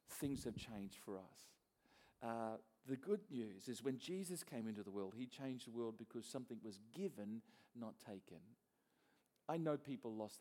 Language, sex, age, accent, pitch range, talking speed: English, male, 50-69, Australian, 115-150 Hz, 175 wpm